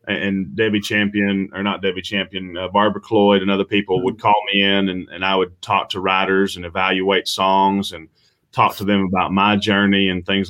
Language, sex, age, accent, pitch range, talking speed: English, male, 30-49, American, 95-110 Hz, 205 wpm